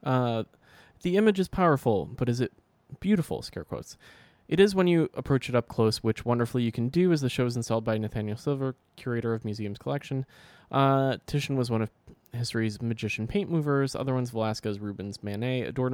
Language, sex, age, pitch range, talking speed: English, male, 20-39, 110-135 Hz, 190 wpm